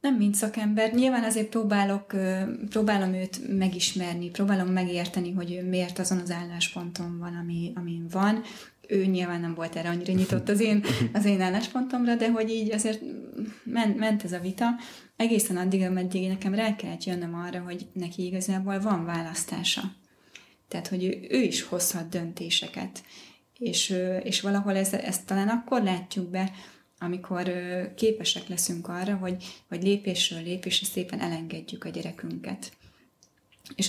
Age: 20-39